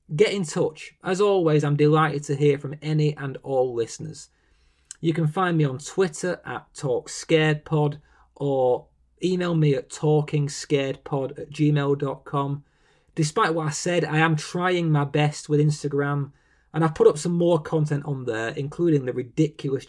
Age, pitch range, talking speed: 30-49, 135-160 Hz, 155 wpm